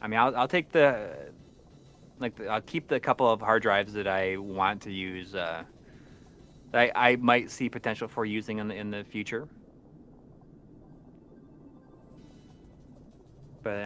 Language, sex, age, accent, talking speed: English, male, 30-49, American, 150 wpm